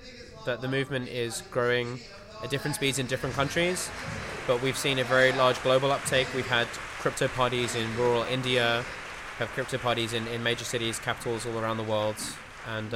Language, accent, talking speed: English, British, 185 wpm